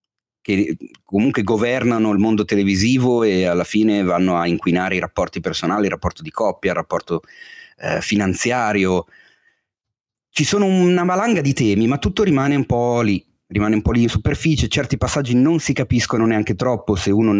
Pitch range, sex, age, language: 90-120 Hz, male, 30-49, Italian